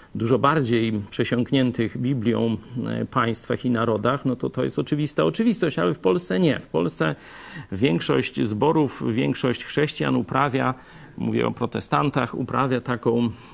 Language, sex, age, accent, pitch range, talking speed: Polish, male, 40-59, native, 120-160 Hz, 130 wpm